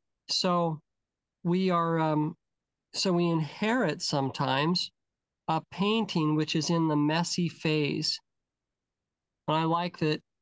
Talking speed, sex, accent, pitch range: 115 wpm, male, American, 150-180 Hz